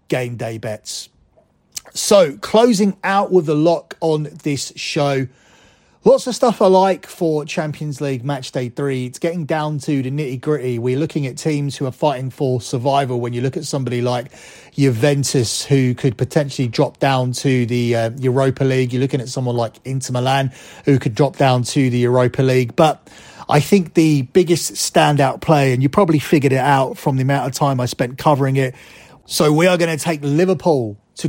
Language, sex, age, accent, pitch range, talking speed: English, male, 30-49, British, 130-160 Hz, 195 wpm